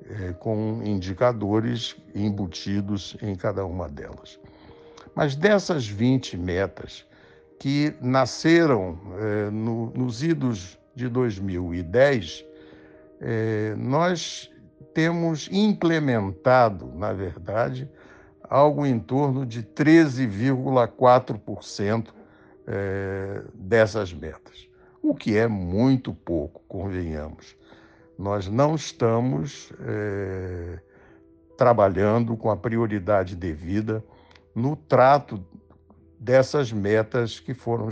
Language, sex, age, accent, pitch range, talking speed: Portuguese, male, 60-79, Brazilian, 95-125 Hz, 80 wpm